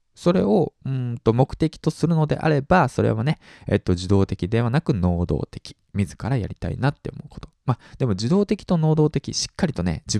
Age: 20-39